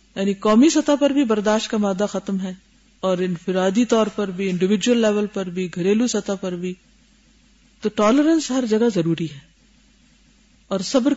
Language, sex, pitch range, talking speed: Urdu, female, 210-270 Hz, 165 wpm